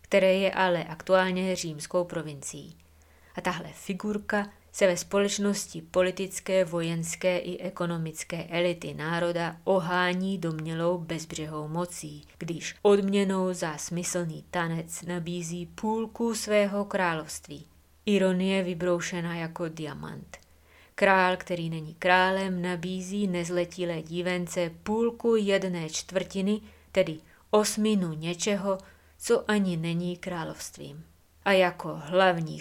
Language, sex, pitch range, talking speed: Czech, female, 165-195 Hz, 100 wpm